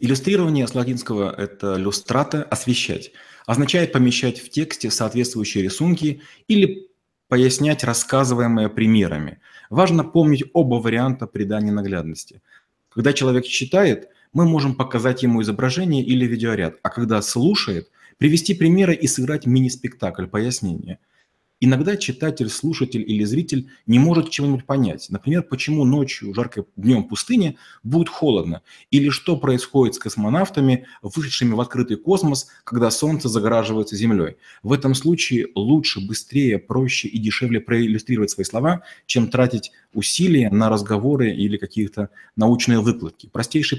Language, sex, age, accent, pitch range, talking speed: Russian, male, 30-49, native, 110-145 Hz, 125 wpm